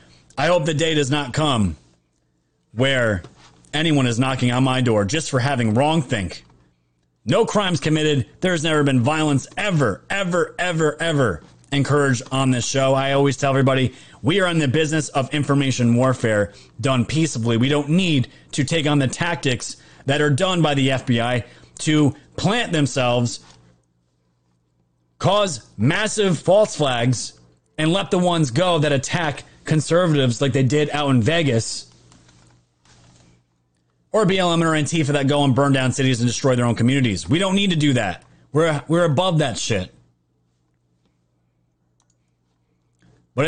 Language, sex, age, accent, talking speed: English, male, 30-49, American, 150 wpm